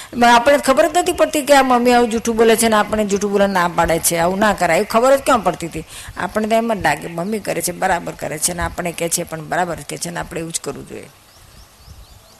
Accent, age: native, 50-69